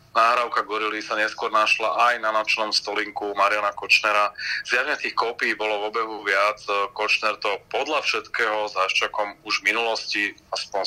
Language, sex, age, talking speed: Slovak, male, 30-49, 150 wpm